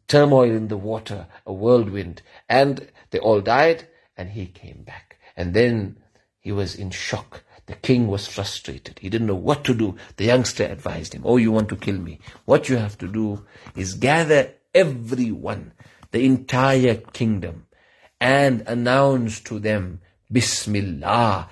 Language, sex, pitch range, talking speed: English, male, 100-125 Hz, 155 wpm